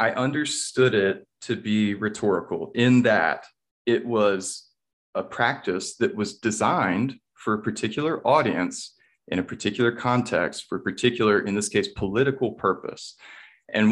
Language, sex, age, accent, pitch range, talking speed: English, male, 30-49, American, 95-120 Hz, 140 wpm